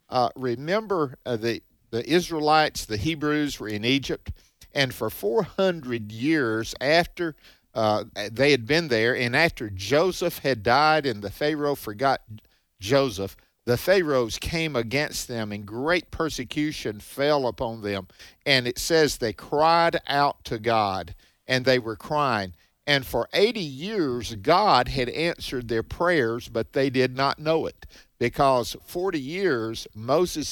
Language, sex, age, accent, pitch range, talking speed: English, male, 50-69, American, 115-155 Hz, 145 wpm